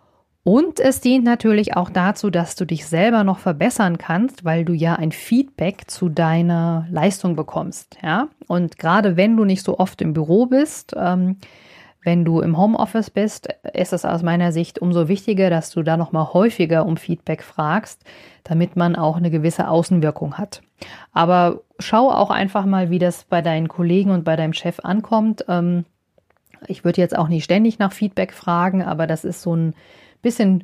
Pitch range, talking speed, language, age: 170-220 Hz, 180 wpm, German, 40-59